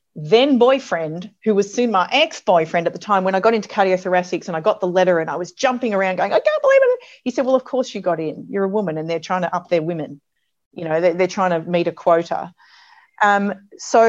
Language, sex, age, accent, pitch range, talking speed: English, female, 40-59, Australian, 165-210 Hz, 250 wpm